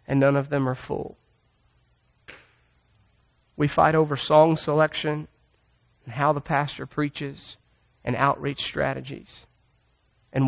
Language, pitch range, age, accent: English, 135-160 Hz, 40-59, American